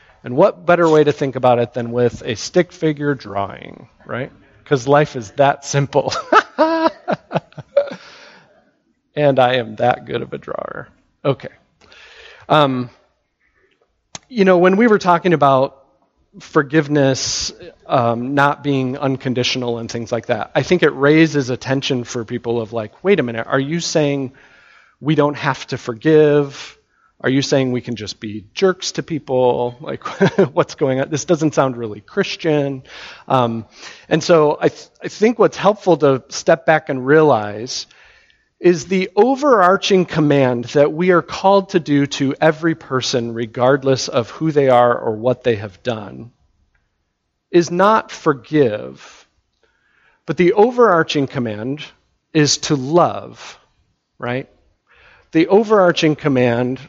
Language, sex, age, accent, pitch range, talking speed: English, male, 40-59, American, 125-165 Hz, 140 wpm